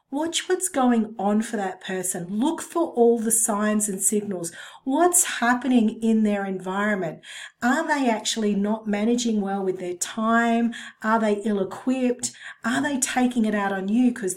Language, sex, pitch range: English, female, 210-255 Hz